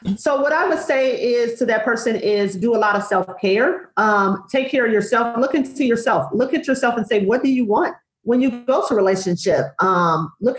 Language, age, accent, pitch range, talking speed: English, 40-59, American, 195-245 Hz, 220 wpm